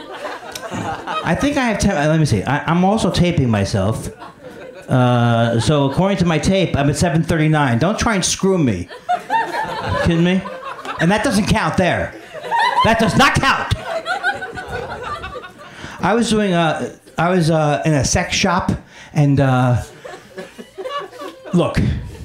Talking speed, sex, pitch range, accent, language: 140 wpm, male, 135-210 Hz, American, English